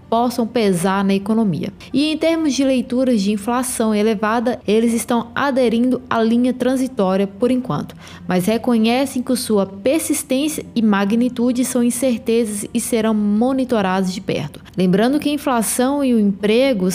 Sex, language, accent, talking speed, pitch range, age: female, Portuguese, Brazilian, 145 wpm, 200-255 Hz, 20-39